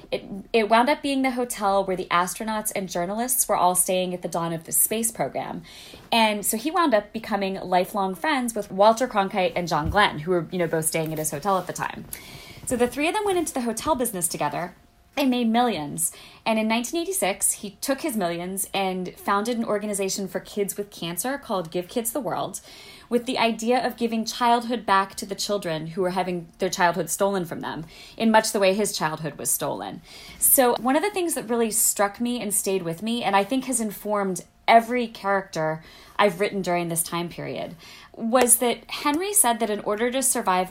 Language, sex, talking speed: English, female, 210 wpm